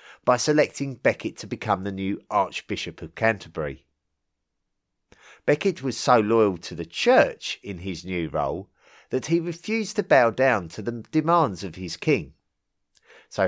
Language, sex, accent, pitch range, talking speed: English, male, British, 90-140 Hz, 150 wpm